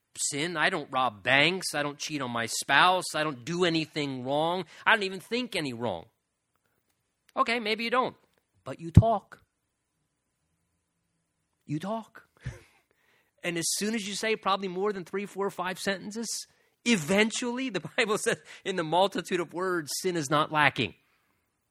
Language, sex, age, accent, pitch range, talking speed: English, male, 30-49, American, 140-200 Hz, 160 wpm